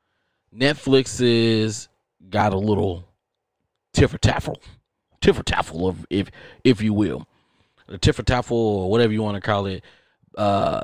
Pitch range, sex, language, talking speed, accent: 100-125 Hz, male, English, 145 wpm, American